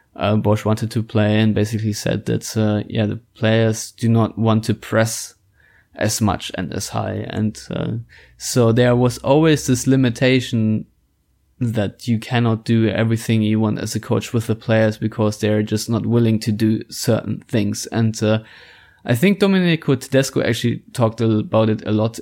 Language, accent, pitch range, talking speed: English, German, 105-115 Hz, 175 wpm